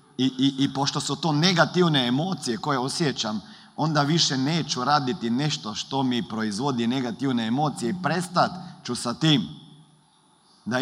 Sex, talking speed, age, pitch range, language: male, 145 wpm, 40-59, 130-170 Hz, Croatian